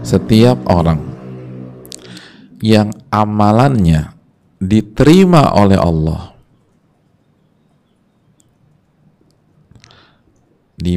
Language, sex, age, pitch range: Indonesian, male, 50-69, 90-115 Hz